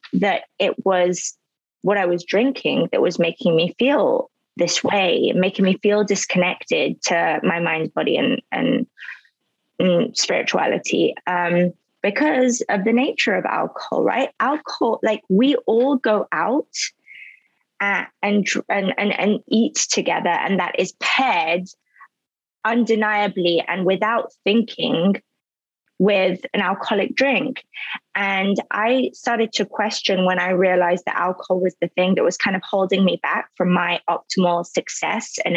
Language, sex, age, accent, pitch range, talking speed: English, female, 20-39, British, 175-215 Hz, 140 wpm